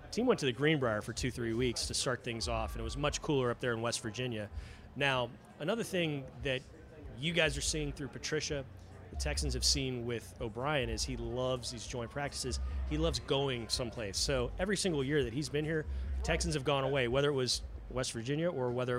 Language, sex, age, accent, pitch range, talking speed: English, male, 30-49, American, 110-140 Hz, 215 wpm